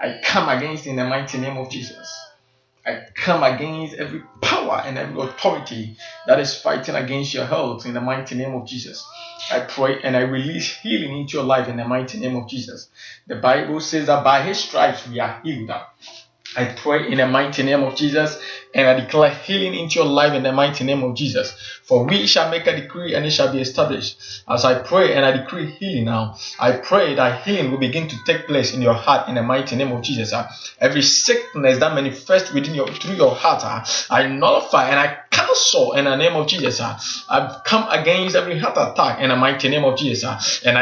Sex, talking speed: male, 210 wpm